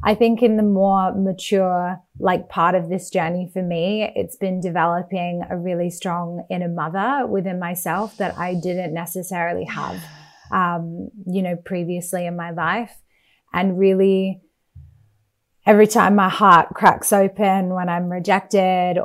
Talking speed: 145 wpm